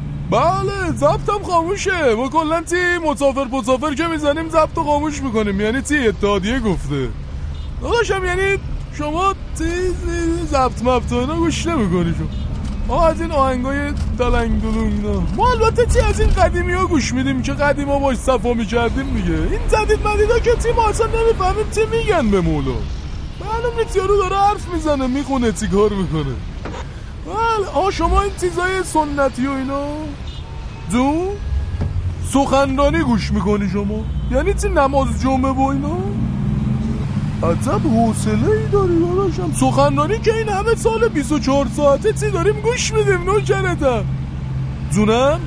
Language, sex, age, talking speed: Persian, male, 20-39, 135 wpm